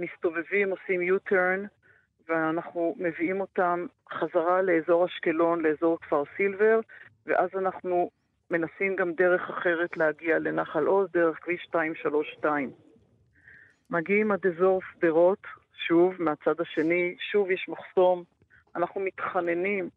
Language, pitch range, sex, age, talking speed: Hebrew, 160-190 Hz, female, 50-69, 110 wpm